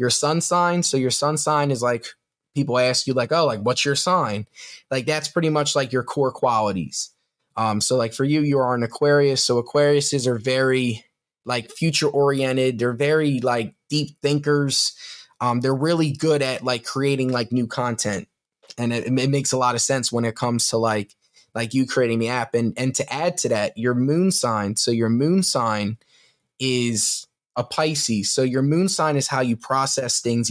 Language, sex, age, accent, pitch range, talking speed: English, male, 10-29, American, 120-145 Hz, 200 wpm